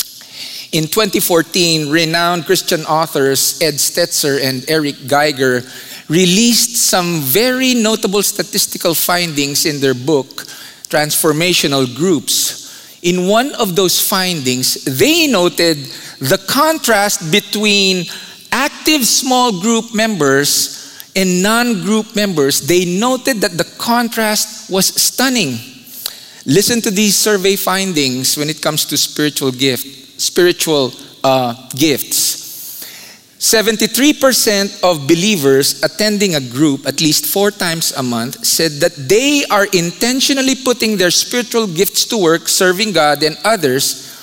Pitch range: 155-230 Hz